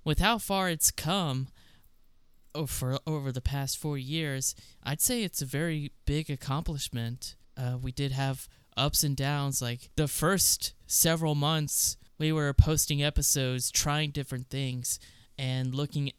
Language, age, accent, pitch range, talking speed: English, 10-29, American, 125-150 Hz, 150 wpm